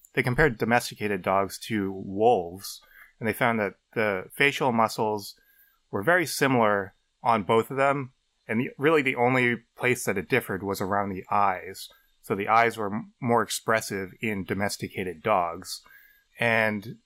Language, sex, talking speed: English, male, 155 wpm